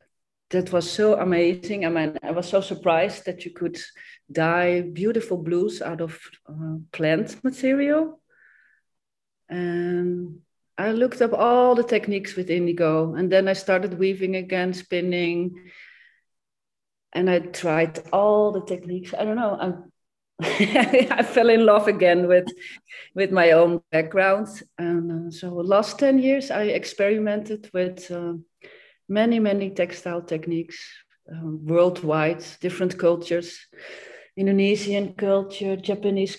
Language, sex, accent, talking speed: English, female, Dutch, 125 wpm